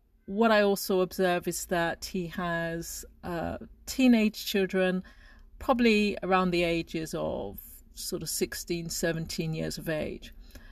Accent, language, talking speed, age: British, English, 130 wpm, 40-59